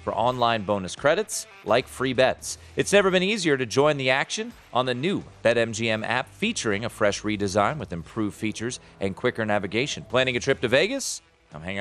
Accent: American